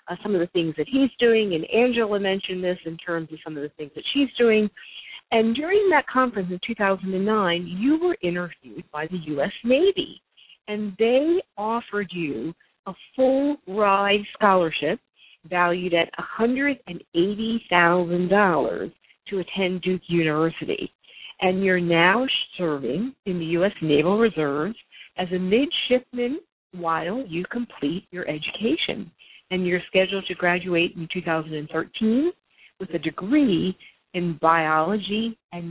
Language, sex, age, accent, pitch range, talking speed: English, female, 50-69, American, 170-225 Hz, 135 wpm